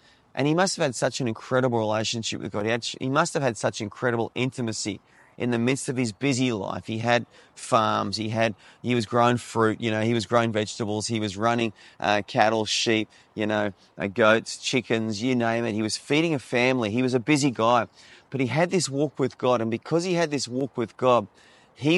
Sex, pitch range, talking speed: male, 115-145 Hz, 225 wpm